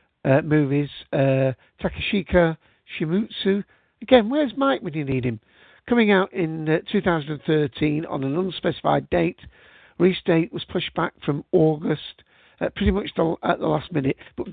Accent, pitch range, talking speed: British, 150-190 Hz, 155 wpm